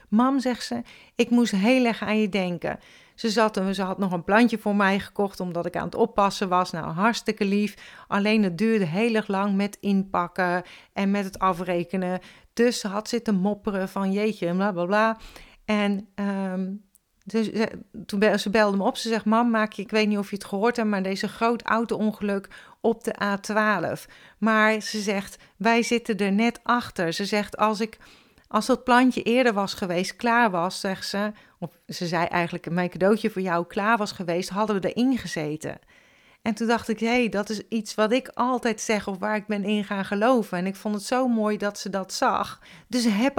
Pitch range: 190-225 Hz